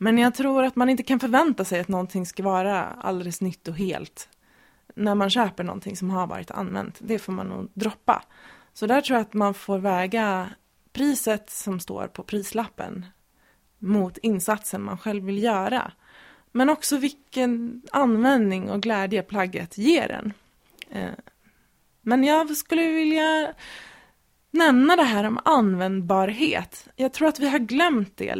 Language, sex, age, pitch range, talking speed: Swedish, female, 20-39, 195-255 Hz, 155 wpm